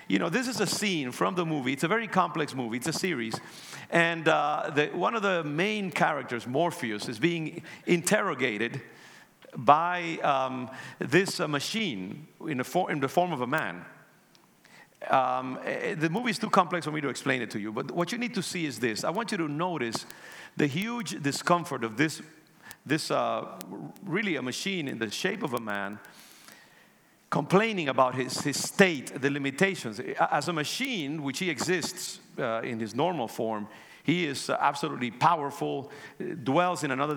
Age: 50-69